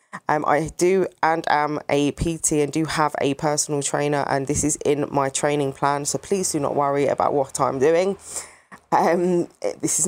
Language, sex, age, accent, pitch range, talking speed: English, female, 20-39, British, 145-175 Hz, 190 wpm